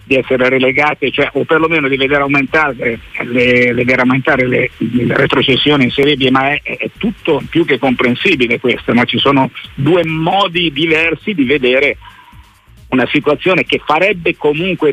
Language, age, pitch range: Italian, 50-69, 125-150 Hz